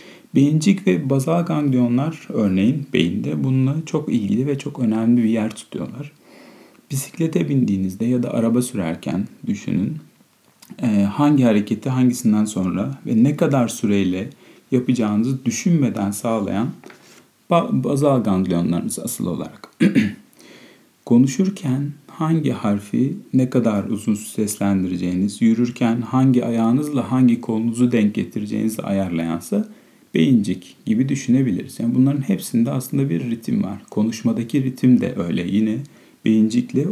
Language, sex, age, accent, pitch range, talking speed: Turkish, male, 40-59, native, 105-145 Hz, 110 wpm